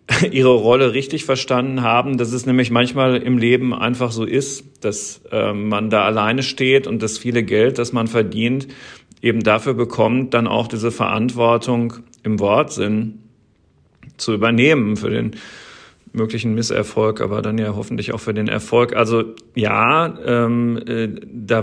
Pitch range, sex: 115-130 Hz, male